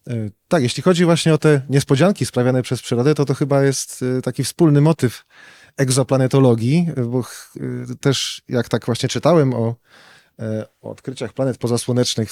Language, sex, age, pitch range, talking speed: Polish, male, 30-49, 115-145 Hz, 145 wpm